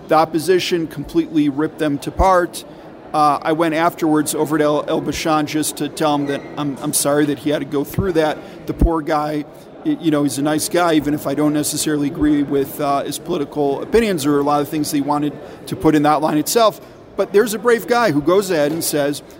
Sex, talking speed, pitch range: male, 230 wpm, 150-175 Hz